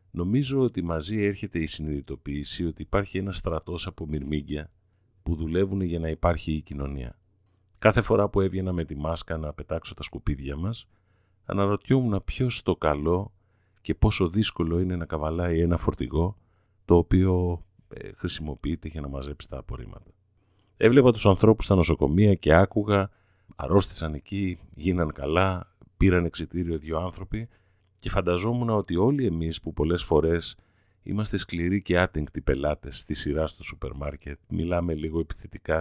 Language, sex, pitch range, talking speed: Greek, male, 80-100 Hz, 145 wpm